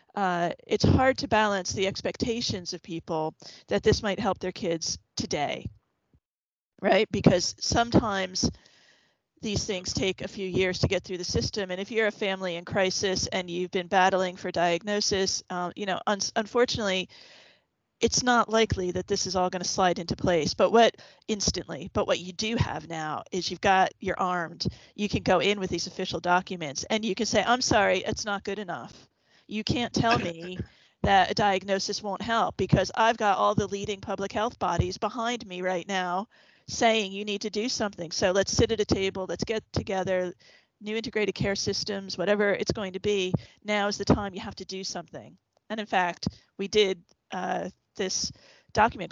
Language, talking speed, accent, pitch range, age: English, 185 wpm, American, 180-210 Hz, 40-59